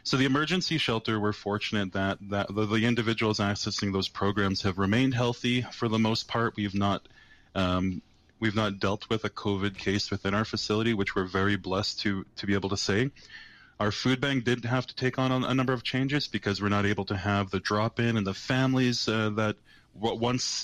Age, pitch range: 20-39, 100-115 Hz